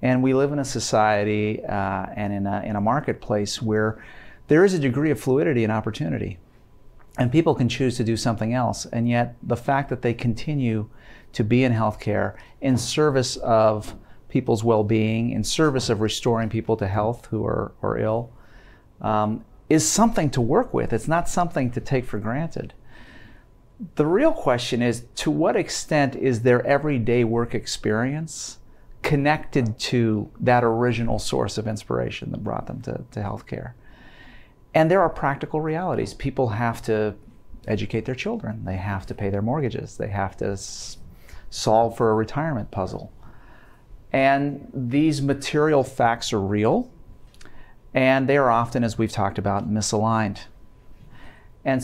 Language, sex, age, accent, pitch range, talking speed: English, male, 40-59, American, 110-135 Hz, 160 wpm